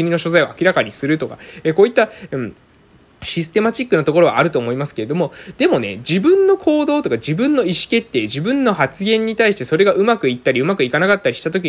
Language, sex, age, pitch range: Japanese, male, 20-39, 150-230 Hz